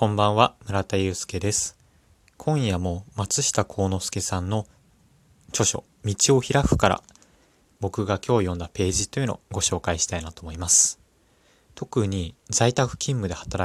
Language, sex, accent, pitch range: Japanese, male, native, 90-110 Hz